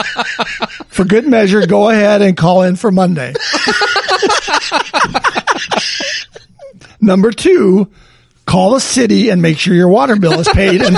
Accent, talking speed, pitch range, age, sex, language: American, 130 wpm, 180-240 Hz, 40-59, male, English